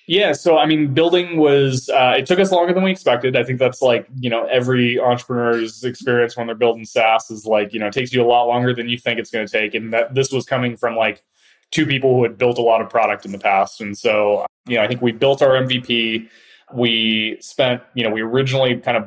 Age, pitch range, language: 20-39, 105-125 Hz, English